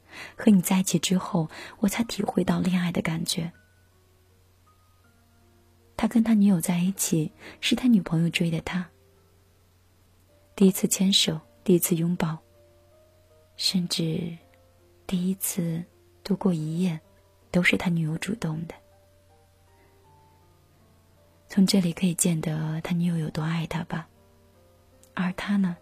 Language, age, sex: Chinese, 20-39, female